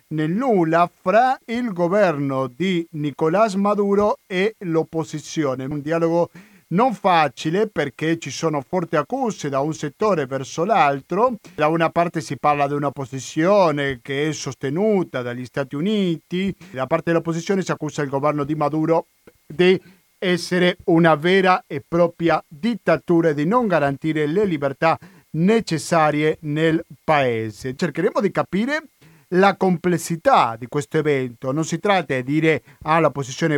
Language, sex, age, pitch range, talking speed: Italian, male, 50-69, 145-195 Hz, 140 wpm